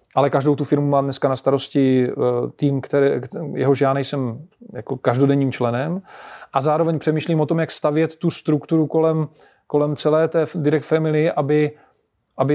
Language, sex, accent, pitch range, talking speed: Czech, male, native, 140-160 Hz, 155 wpm